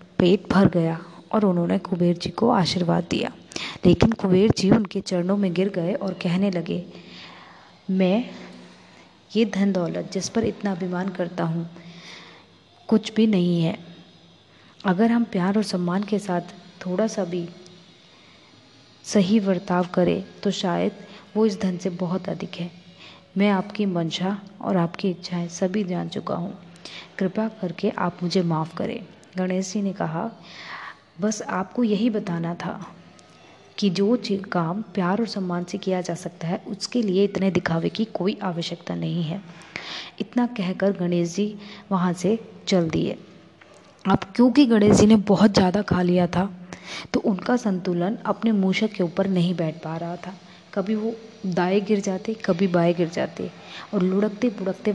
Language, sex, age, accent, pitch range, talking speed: Hindi, female, 20-39, native, 175-205 Hz, 155 wpm